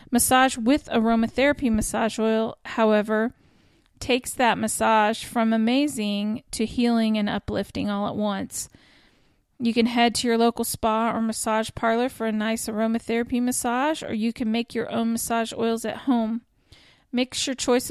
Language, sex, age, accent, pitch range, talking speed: English, female, 40-59, American, 205-230 Hz, 155 wpm